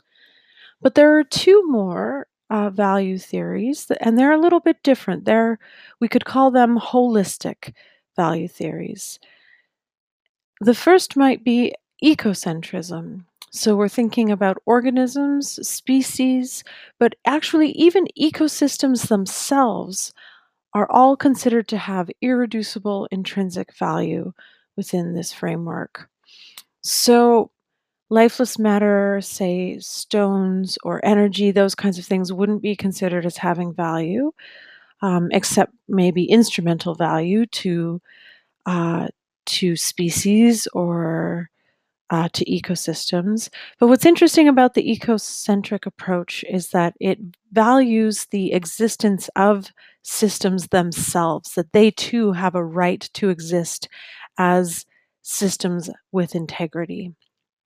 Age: 30-49